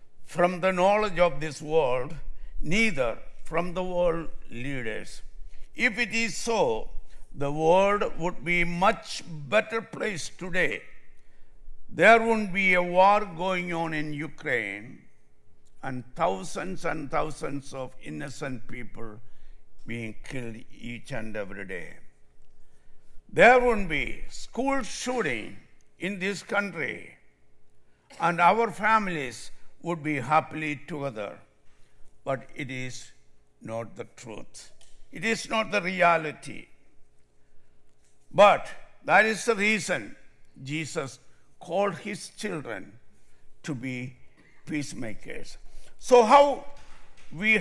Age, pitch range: 60-79, 125-185 Hz